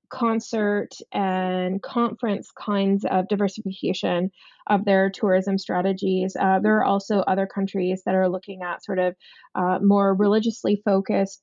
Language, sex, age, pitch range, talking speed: English, female, 20-39, 190-225 Hz, 135 wpm